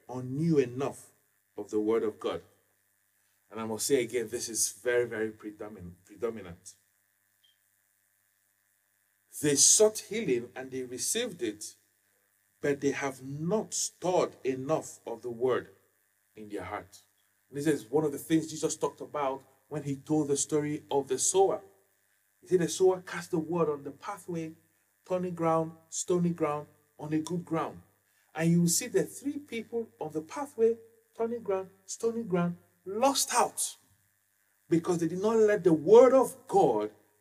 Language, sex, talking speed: English, male, 155 wpm